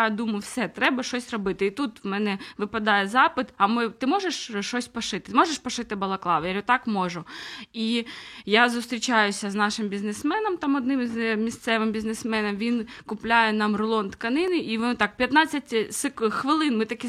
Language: Ukrainian